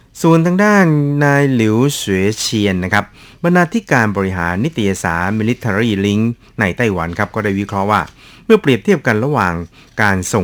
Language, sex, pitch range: Thai, male, 95-115 Hz